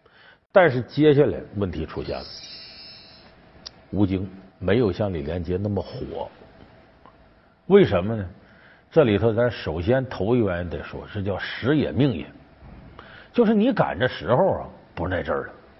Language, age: Chinese, 50-69